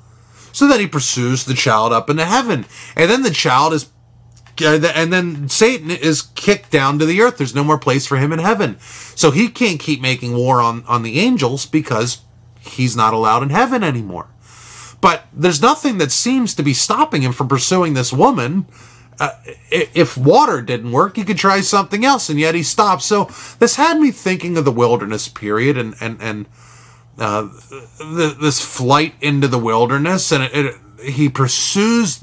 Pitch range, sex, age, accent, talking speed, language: 120-165 Hz, male, 30-49, American, 180 wpm, English